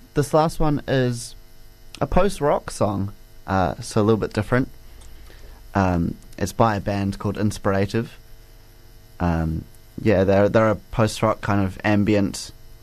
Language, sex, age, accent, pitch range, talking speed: English, male, 20-39, Australian, 100-115 Hz, 135 wpm